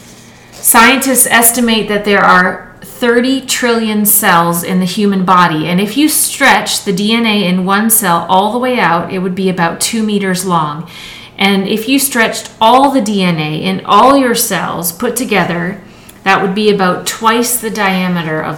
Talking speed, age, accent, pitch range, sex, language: 170 wpm, 40-59, American, 185-225 Hz, female, English